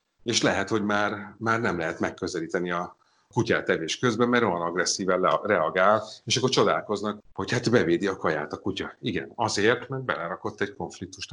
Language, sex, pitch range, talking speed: Hungarian, male, 95-120 Hz, 170 wpm